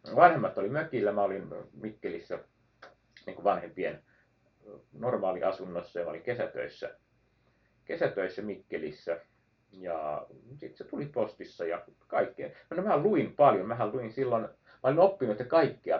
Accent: native